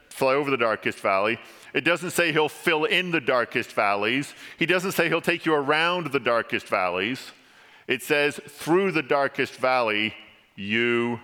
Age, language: 50-69, English